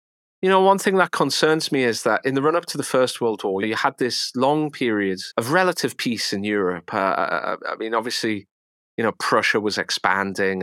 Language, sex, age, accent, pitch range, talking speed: English, male, 30-49, British, 95-120 Hz, 205 wpm